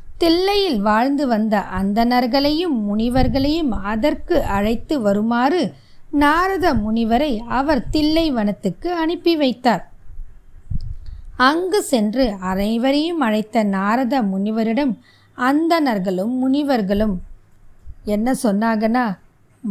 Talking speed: 75 wpm